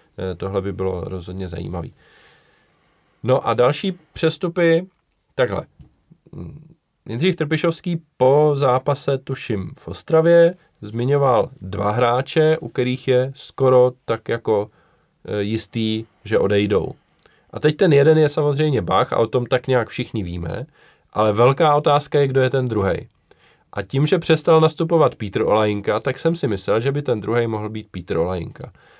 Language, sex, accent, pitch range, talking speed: Czech, male, native, 105-145 Hz, 145 wpm